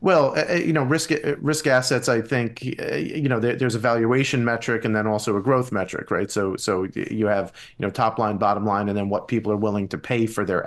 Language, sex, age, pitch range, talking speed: English, male, 30-49, 110-130 Hz, 230 wpm